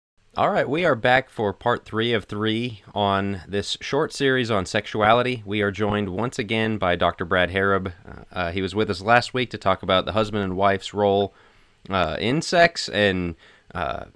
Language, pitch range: English, 100-125 Hz